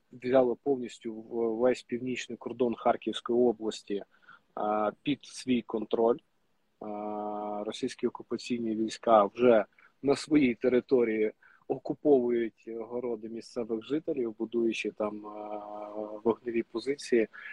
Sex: male